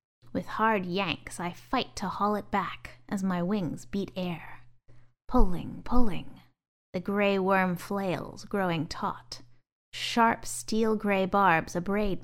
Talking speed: 125 wpm